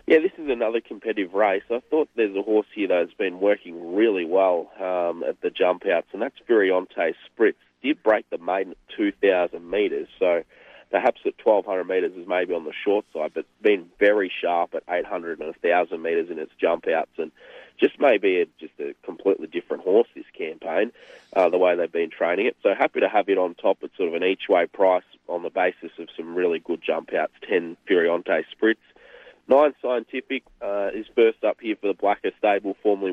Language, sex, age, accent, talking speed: English, male, 30-49, Australian, 200 wpm